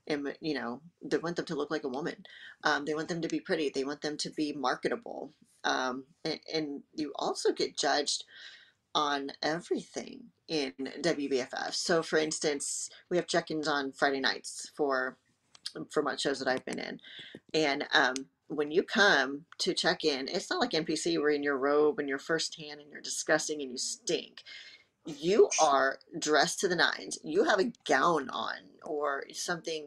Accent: American